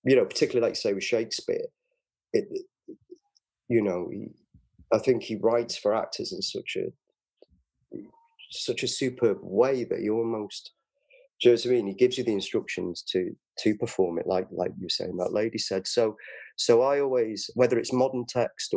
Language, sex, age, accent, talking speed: English, male, 30-49, British, 185 wpm